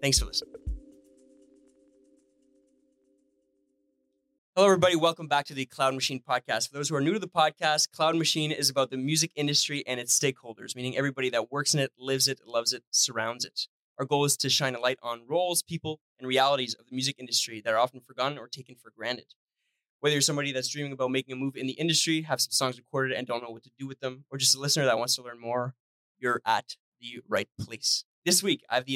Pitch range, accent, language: 130-155 Hz, American, English